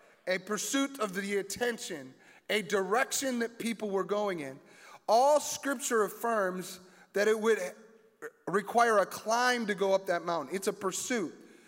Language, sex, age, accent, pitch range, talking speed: English, male, 30-49, American, 210-275 Hz, 150 wpm